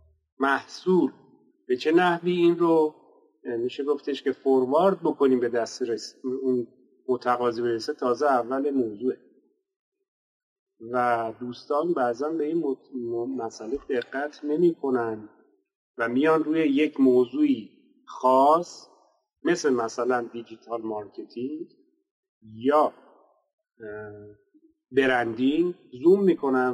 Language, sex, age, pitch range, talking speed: Persian, male, 40-59, 125-190 Hz, 100 wpm